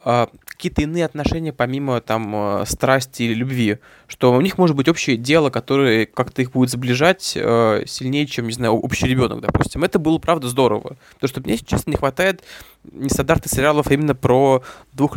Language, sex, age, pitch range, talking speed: Russian, male, 20-39, 120-150 Hz, 175 wpm